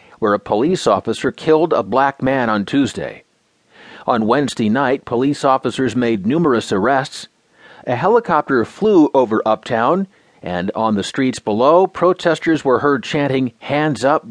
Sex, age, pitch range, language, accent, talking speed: male, 40-59, 115-155 Hz, English, American, 145 wpm